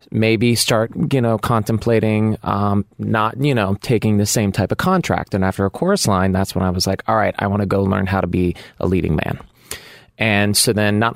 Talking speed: 225 wpm